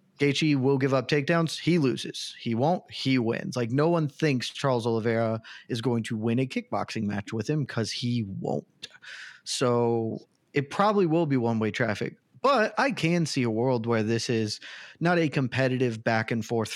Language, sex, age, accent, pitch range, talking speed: English, male, 30-49, American, 110-135 Hz, 175 wpm